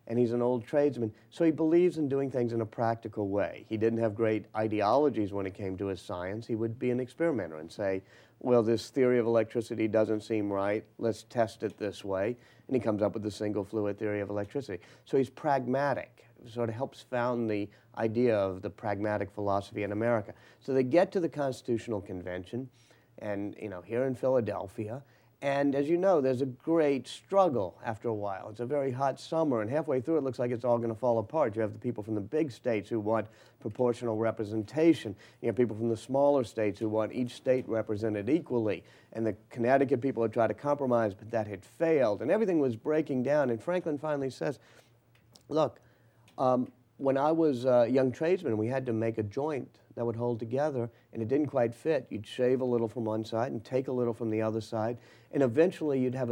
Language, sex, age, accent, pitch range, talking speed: English, male, 40-59, American, 110-130 Hz, 215 wpm